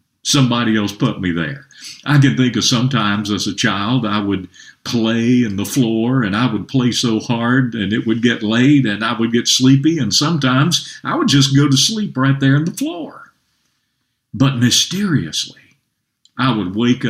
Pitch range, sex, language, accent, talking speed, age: 100-135 Hz, male, English, American, 185 wpm, 50-69